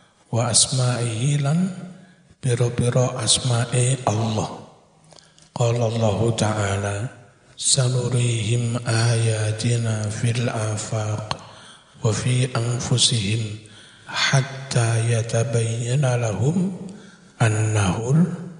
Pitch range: 115-140 Hz